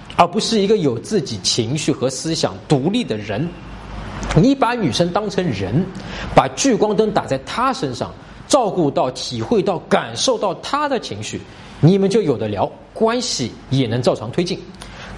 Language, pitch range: Chinese, 140-215 Hz